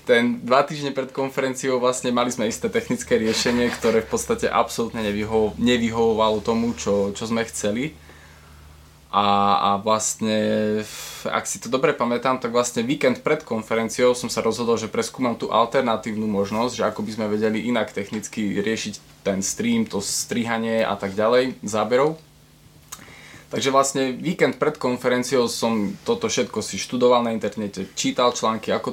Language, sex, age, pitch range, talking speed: Slovak, male, 20-39, 105-120 Hz, 155 wpm